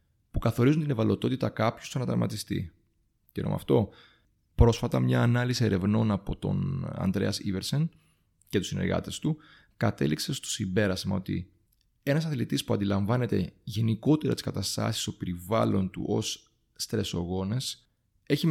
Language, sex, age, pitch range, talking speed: Greek, male, 30-49, 100-125 Hz, 125 wpm